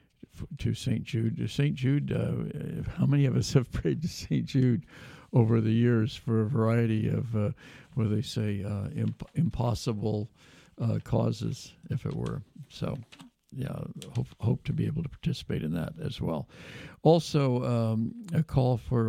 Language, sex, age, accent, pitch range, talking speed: English, male, 60-79, American, 115-135 Hz, 165 wpm